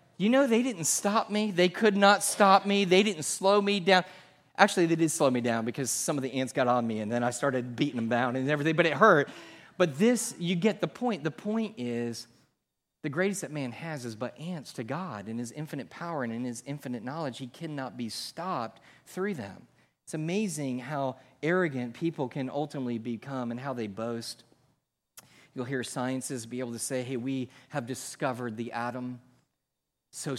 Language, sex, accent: English, male, American